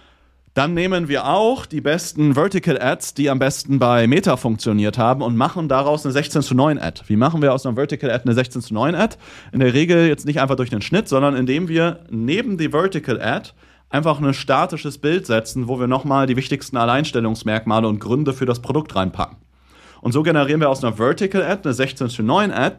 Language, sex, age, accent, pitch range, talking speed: German, male, 30-49, German, 110-140 Hz, 215 wpm